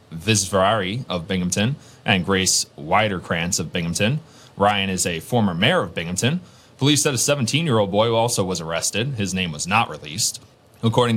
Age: 20-39